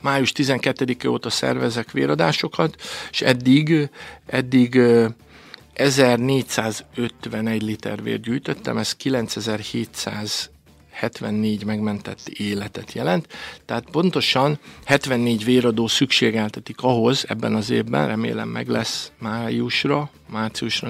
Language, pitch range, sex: Hungarian, 110-125 Hz, male